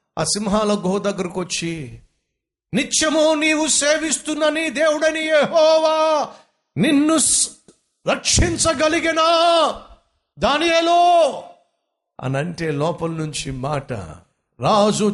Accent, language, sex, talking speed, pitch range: native, Telugu, male, 80 wpm, 150-235 Hz